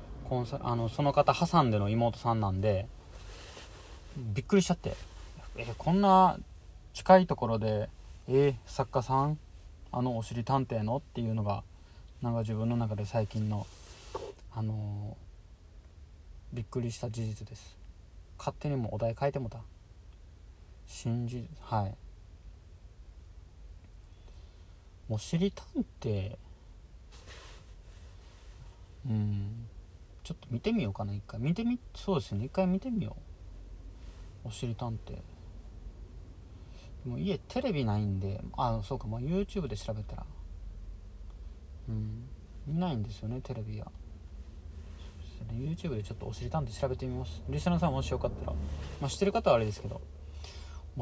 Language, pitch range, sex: Japanese, 85-125 Hz, male